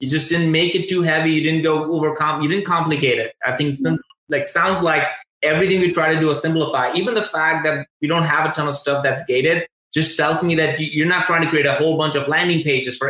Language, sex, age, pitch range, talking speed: English, male, 20-39, 135-165 Hz, 265 wpm